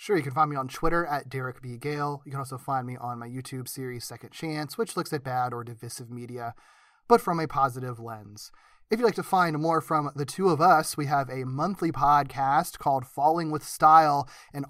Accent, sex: American, male